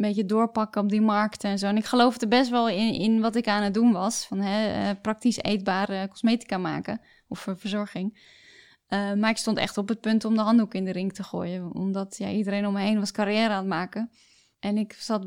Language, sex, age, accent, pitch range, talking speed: Dutch, female, 10-29, Dutch, 205-230 Hz, 230 wpm